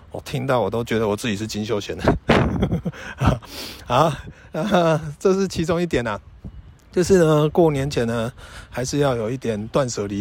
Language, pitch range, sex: Chinese, 115-155 Hz, male